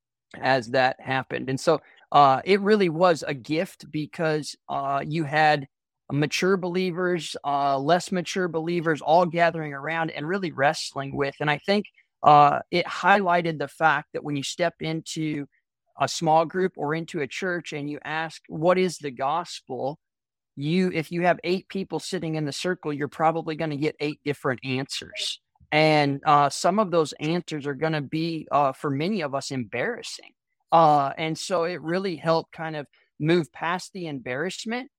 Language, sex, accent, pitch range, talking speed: English, male, American, 140-175 Hz, 170 wpm